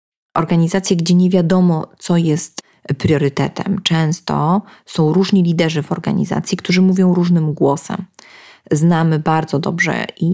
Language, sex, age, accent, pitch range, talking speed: Polish, female, 30-49, native, 150-185 Hz, 120 wpm